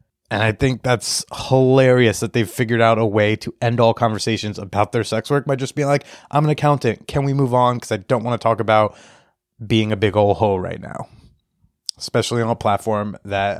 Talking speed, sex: 215 wpm, male